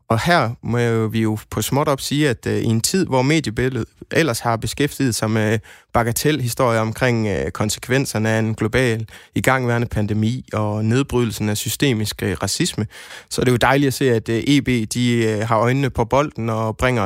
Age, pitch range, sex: 20-39, 110-145 Hz, male